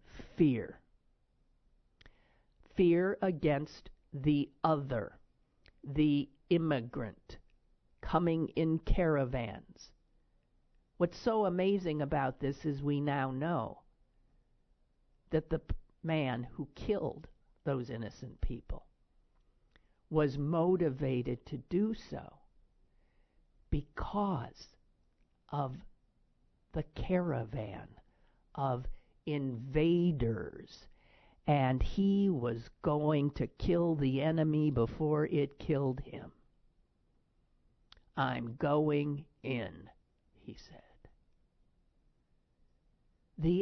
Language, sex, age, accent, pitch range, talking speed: English, male, 50-69, American, 115-155 Hz, 75 wpm